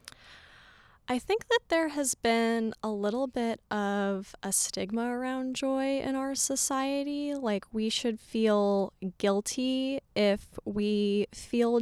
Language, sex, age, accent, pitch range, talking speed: English, female, 20-39, American, 200-235 Hz, 125 wpm